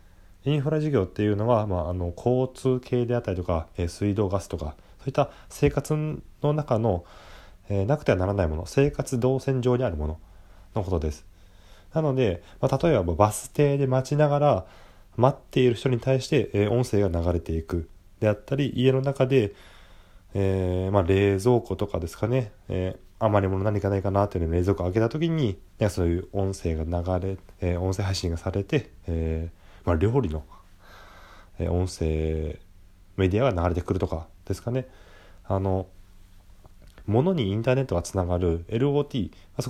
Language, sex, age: Japanese, male, 20-39